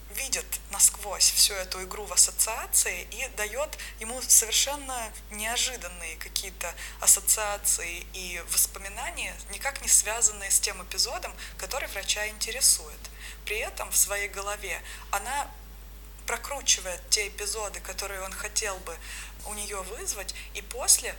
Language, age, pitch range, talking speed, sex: Russian, 20-39, 195-235 Hz, 120 wpm, female